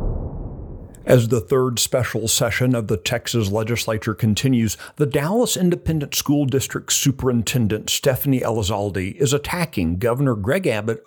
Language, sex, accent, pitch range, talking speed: English, male, American, 110-140 Hz, 125 wpm